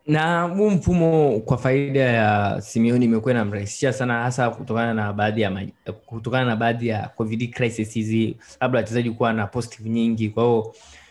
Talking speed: 150 wpm